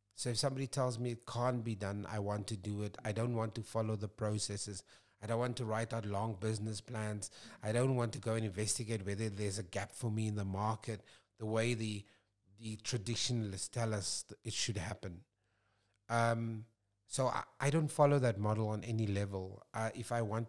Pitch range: 105-120 Hz